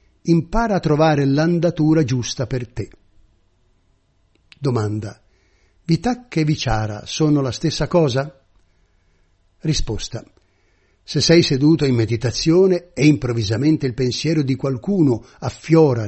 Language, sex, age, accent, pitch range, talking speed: Italian, male, 60-79, native, 110-165 Hz, 105 wpm